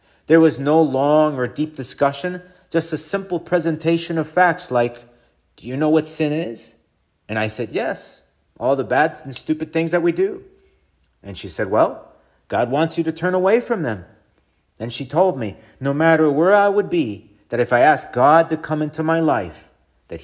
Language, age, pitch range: English, 40-59, 120-160 Hz